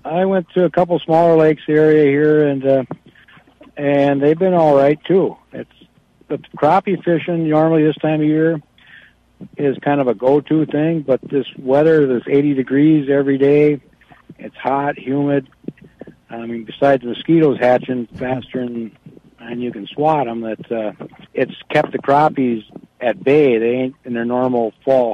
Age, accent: 60-79, American